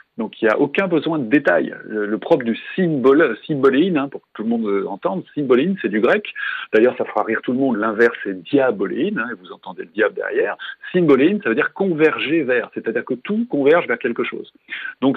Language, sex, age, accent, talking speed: French, male, 40-59, French, 220 wpm